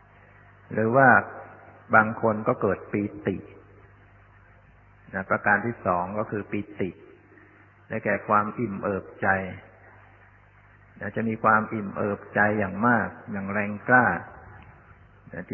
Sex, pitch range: male, 100-110 Hz